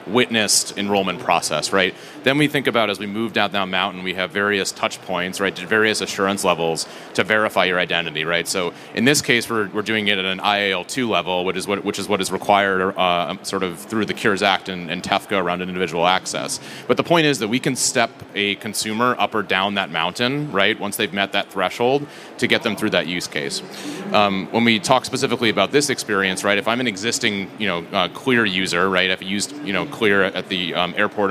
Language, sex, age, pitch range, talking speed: English, male, 30-49, 95-110 Hz, 230 wpm